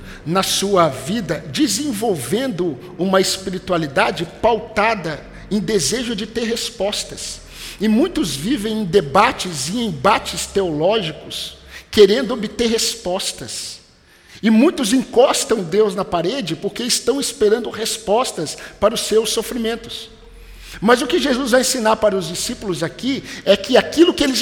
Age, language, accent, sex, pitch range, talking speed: 50-69, Portuguese, Brazilian, male, 145-225 Hz, 130 wpm